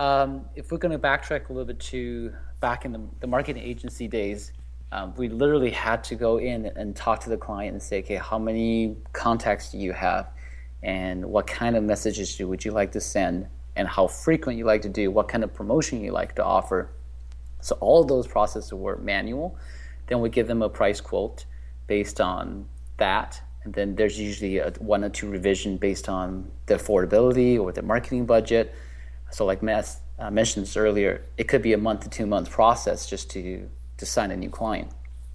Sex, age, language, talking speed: male, 30-49, English, 195 wpm